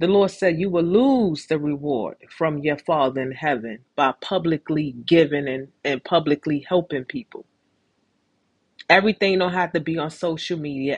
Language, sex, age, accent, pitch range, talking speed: English, female, 30-49, American, 150-185 Hz, 160 wpm